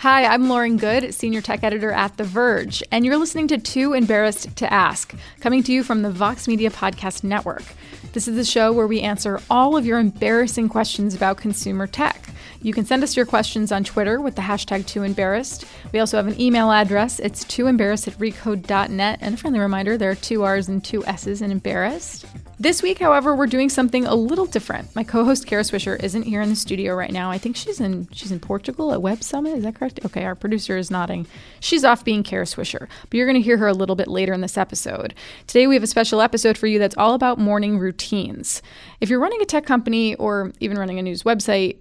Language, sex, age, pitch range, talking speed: English, female, 20-39, 195-235 Hz, 230 wpm